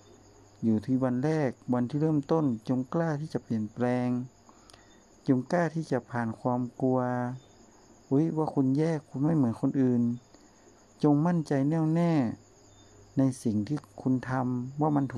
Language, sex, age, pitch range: Thai, male, 60-79, 105-140 Hz